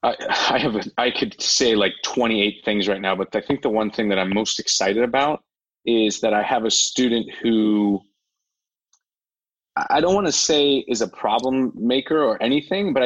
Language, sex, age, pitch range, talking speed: English, male, 30-49, 110-150 Hz, 195 wpm